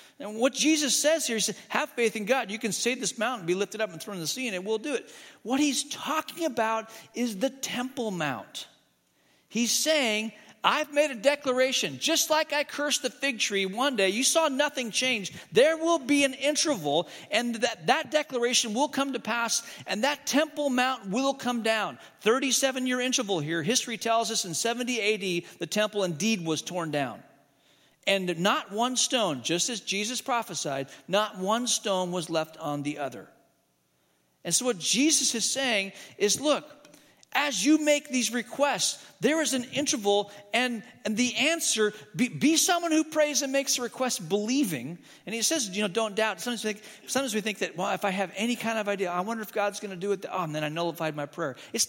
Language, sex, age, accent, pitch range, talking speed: English, male, 40-59, American, 195-270 Hz, 200 wpm